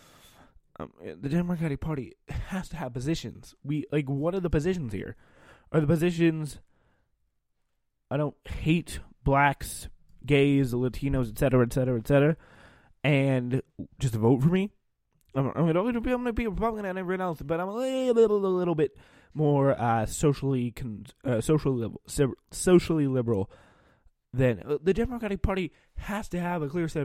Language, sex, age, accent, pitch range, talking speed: English, male, 20-39, American, 125-170 Hz, 160 wpm